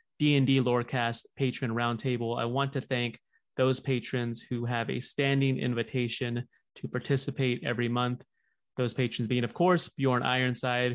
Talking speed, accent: 140 wpm, American